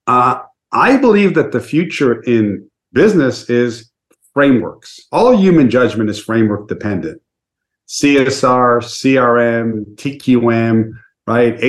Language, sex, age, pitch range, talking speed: English, male, 50-69, 115-140 Hz, 105 wpm